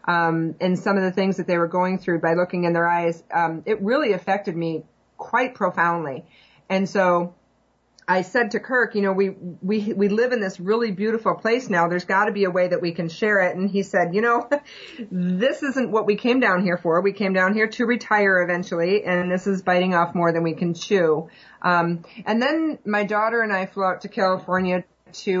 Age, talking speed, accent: 30-49, 220 wpm, American